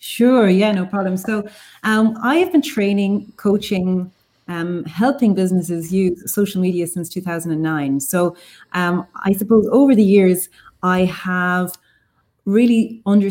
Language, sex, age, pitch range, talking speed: English, female, 30-49, 175-210 Hz, 125 wpm